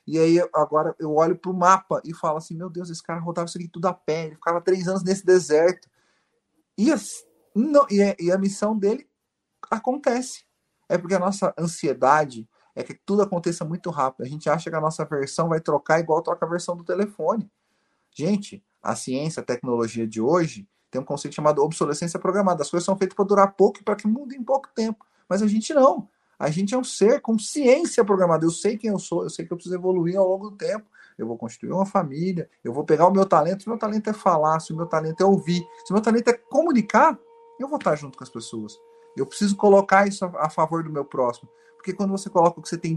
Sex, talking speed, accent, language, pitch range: male, 235 wpm, Brazilian, Portuguese, 160-210 Hz